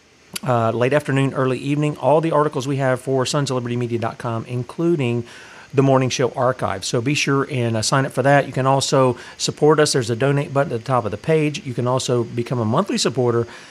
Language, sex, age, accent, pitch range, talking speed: English, male, 40-59, American, 115-145 Hz, 210 wpm